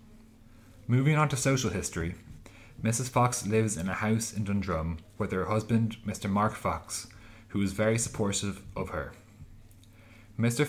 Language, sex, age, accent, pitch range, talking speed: English, male, 30-49, Irish, 95-110 Hz, 145 wpm